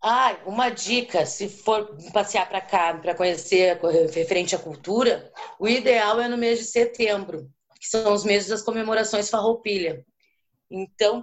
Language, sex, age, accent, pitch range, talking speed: Portuguese, female, 20-39, Brazilian, 195-235 Hz, 150 wpm